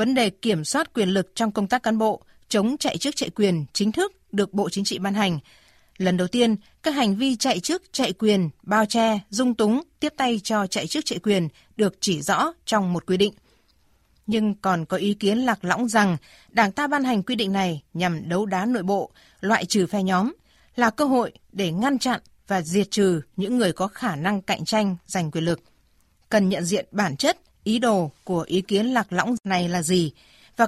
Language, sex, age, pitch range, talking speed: Vietnamese, female, 20-39, 185-235 Hz, 215 wpm